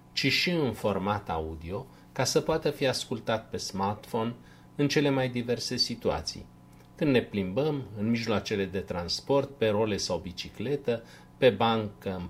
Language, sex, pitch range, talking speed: Romanian, male, 90-120 Hz, 150 wpm